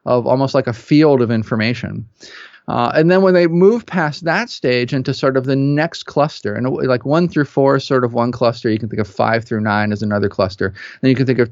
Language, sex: English, male